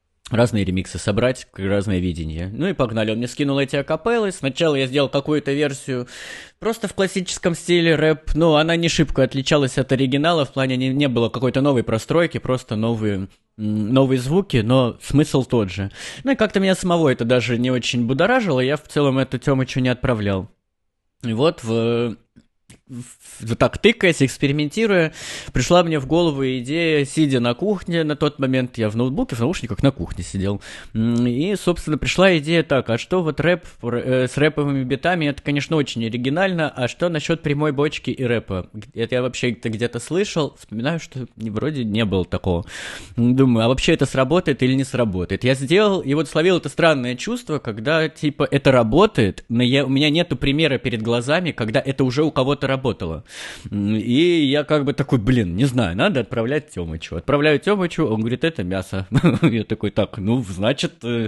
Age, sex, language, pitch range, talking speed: 20-39, male, Russian, 120-155 Hz, 175 wpm